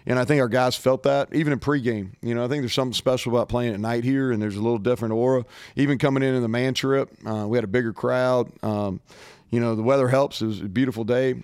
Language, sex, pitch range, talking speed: English, male, 115-125 Hz, 270 wpm